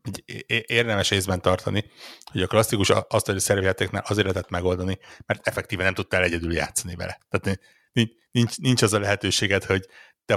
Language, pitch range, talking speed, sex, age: Hungarian, 90-105 Hz, 170 wpm, male, 60-79